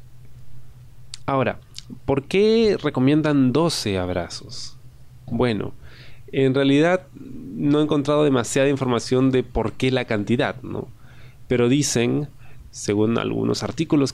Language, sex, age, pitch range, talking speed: Spanish, male, 30-49, 110-130 Hz, 105 wpm